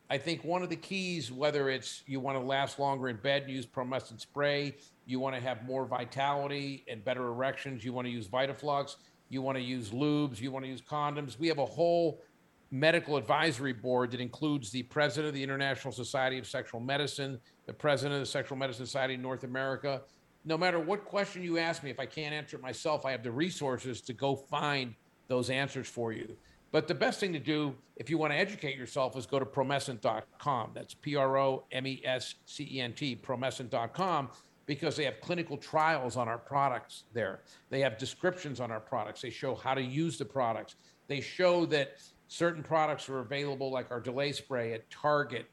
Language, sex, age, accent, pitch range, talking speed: English, male, 50-69, American, 130-150 Hz, 190 wpm